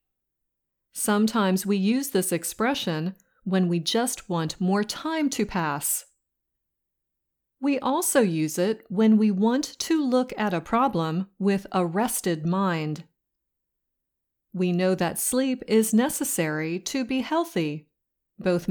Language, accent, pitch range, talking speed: English, American, 170-240 Hz, 125 wpm